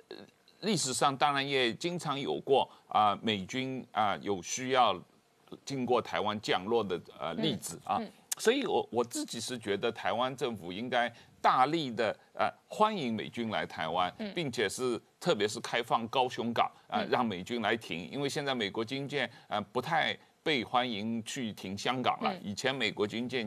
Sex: male